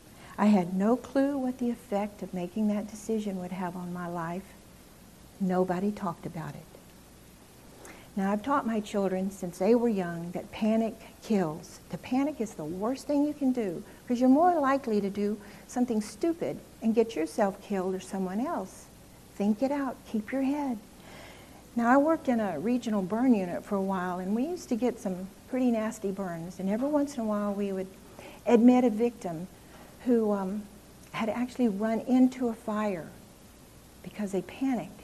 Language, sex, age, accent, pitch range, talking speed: English, female, 60-79, American, 185-240 Hz, 180 wpm